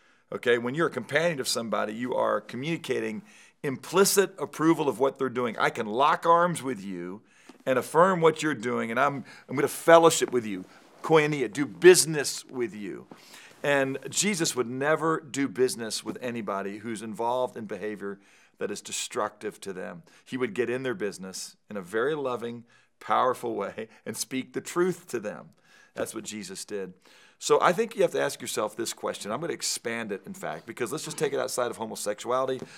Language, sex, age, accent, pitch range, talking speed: English, male, 50-69, American, 120-145 Hz, 190 wpm